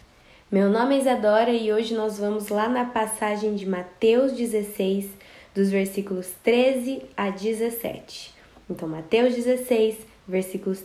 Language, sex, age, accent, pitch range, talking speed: Portuguese, female, 10-29, Brazilian, 195-255 Hz, 125 wpm